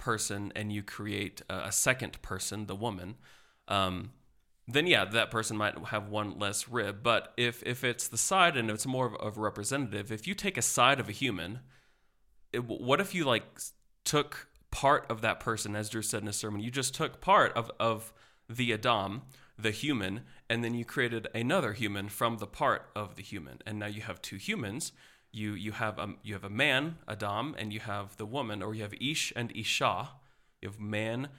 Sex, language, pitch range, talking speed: male, English, 100-120 Hz, 200 wpm